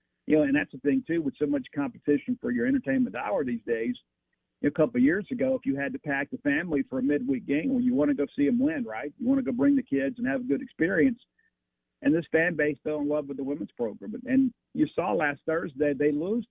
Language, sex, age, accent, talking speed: English, male, 50-69, American, 260 wpm